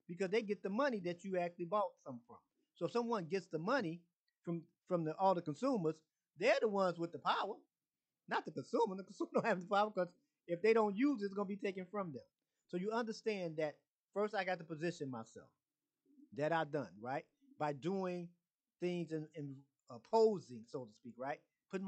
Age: 30-49